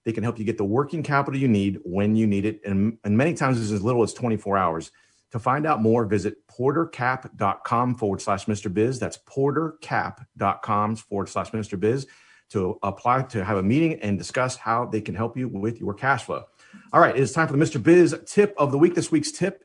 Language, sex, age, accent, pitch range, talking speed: English, male, 40-59, American, 105-130 Hz, 220 wpm